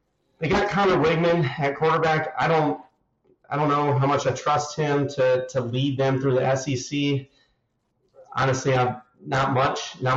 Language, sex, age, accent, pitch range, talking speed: English, male, 30-49, American, 130-145 Hz, 165 wpm